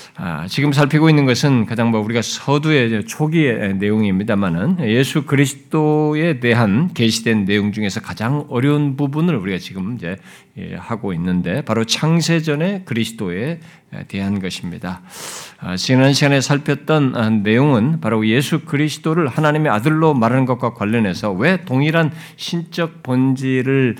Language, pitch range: Korean, 110-145 Hz